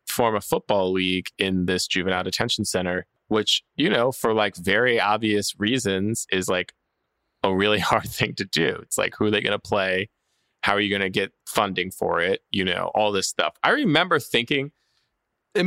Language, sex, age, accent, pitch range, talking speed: English, male, 20-39, American, 100-130 Hz, 195 wpm